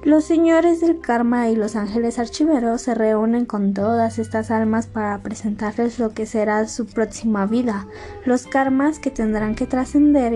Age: 20-39